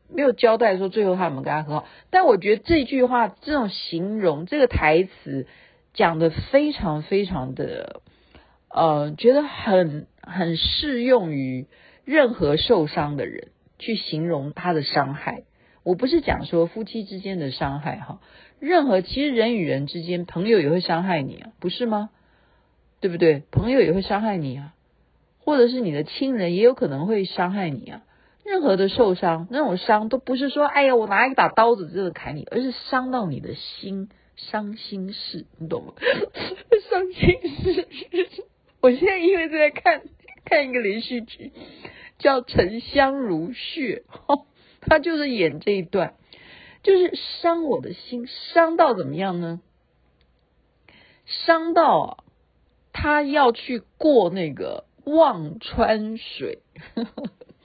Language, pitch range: Chinese, 175-280 Hz